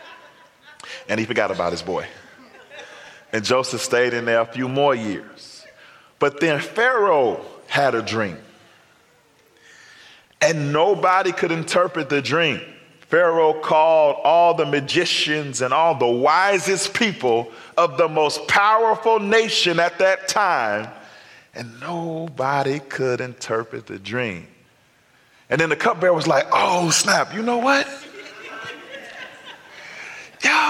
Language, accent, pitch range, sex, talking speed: English, American, 135-210 Hz, male, 125 wpm